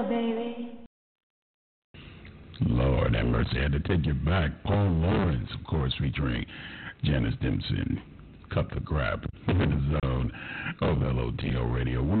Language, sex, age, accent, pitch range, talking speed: English, male, 60-79, American, 75-100 Hz, 145 wpm